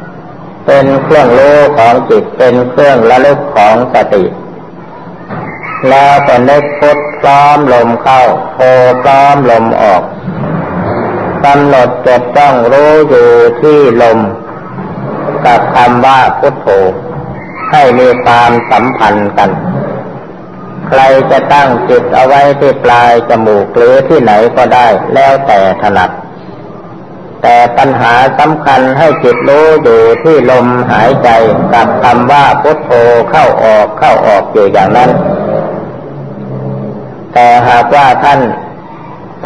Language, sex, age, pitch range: Thai, male, 60-79, 120-145 Hz